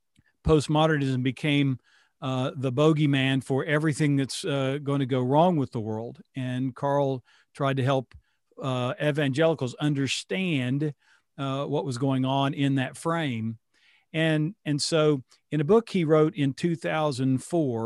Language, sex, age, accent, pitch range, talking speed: English, male, 50-69, American, 130-155 Hz, 140 wpm